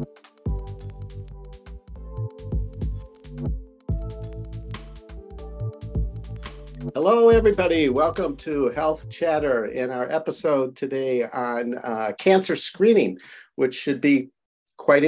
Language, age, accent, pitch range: English, 50-69, American, 110-140 Hz